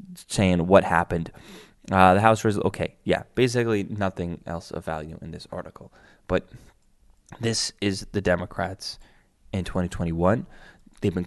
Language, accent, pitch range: English, American, 110-175 Hz